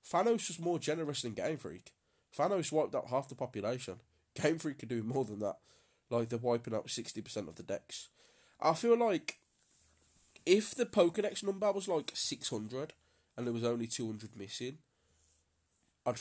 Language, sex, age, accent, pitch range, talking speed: English, male, 20-39, British, 105-135 Hz, 165 wpm